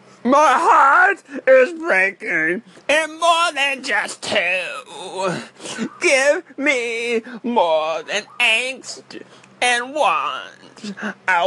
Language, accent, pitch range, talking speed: English, American, 275-400 Hz, 90 wpm